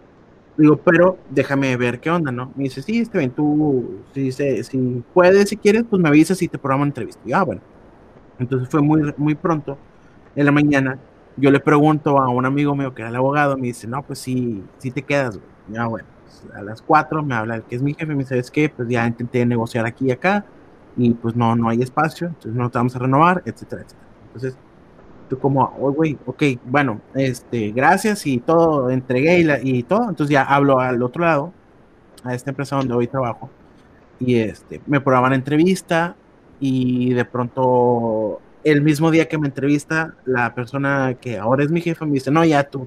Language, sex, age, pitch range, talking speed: Spanish, male, 30-49, 125-150 Hz, 215 wpm